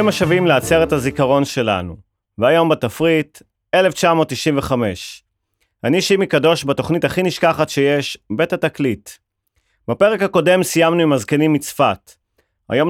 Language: Hebrew